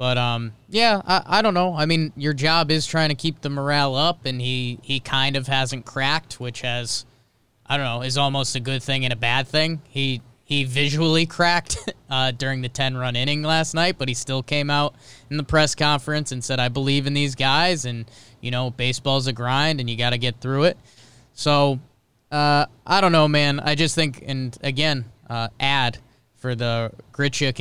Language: English